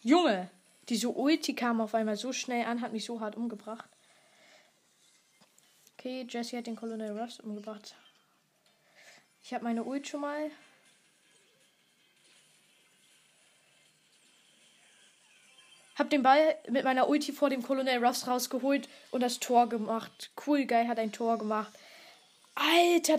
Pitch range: 230-275 Hz